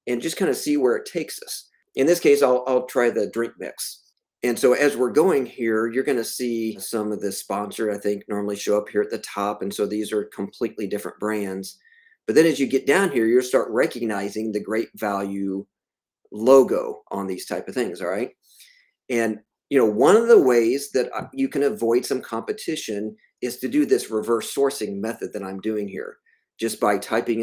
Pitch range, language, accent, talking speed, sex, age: 105-135 Hz, English, American, 210 wpm, male, 40-59